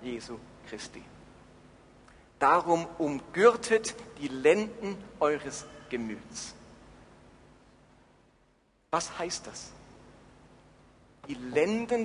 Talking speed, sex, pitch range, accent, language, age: 65 wpm, male, 150-210 Hz, German, German, 50-69